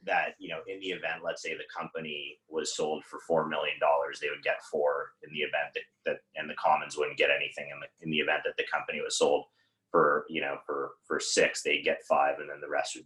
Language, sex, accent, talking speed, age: English, male, American, 245 wpm, 30-49